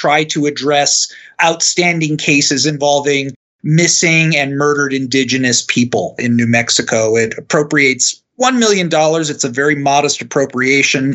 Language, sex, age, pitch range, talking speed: English, male, 30-49, 135-180 Hz, 130 wpm